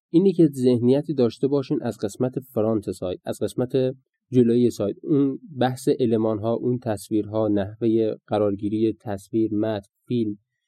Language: Persian